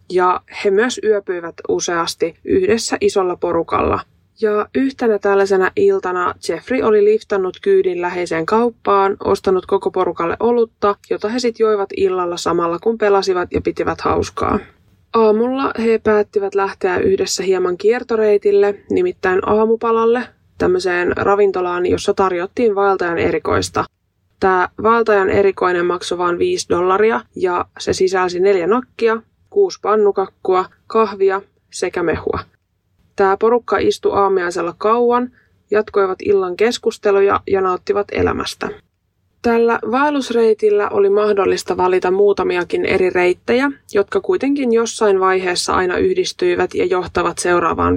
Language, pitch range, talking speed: Finnish, 185-240 Hz, 115 wpm